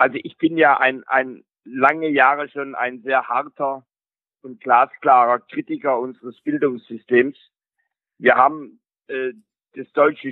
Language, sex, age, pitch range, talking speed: German, male, 50-69, 140-175 Hz, 130 wpm